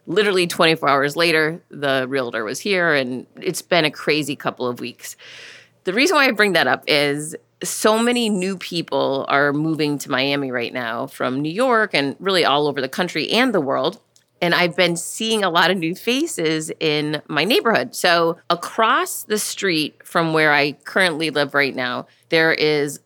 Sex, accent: female, American